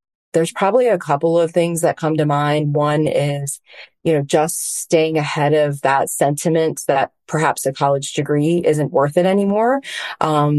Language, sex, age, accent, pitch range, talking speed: English, female, 30-49, American, 145-160 Hz, 170 wpm